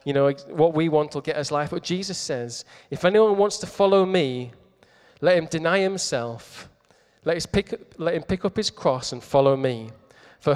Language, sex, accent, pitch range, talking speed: English, male, British, 135-190 Hz, 190 wpm